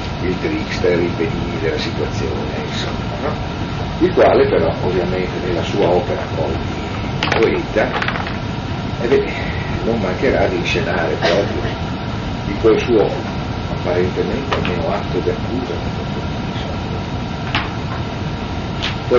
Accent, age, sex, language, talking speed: native, 50-69, male, Italian, 95 wpm